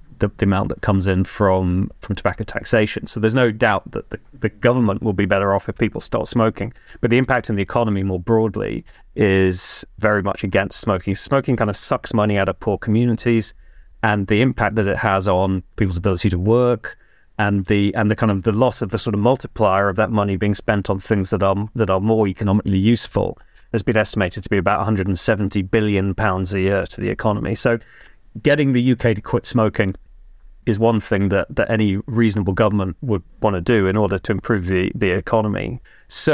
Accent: British